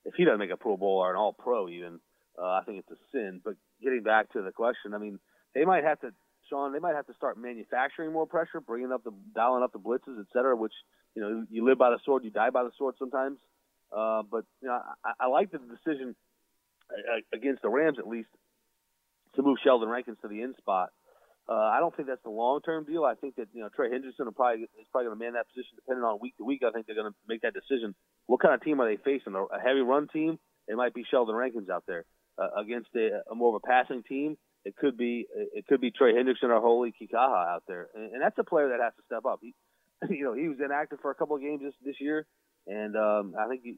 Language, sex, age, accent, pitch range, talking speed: English, male, 30-49, American, 115-140 Hz, 260 wpm